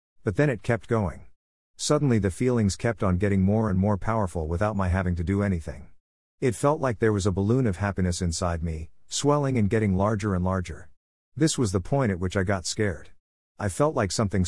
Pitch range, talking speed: 90-115 Hz, 210 wpm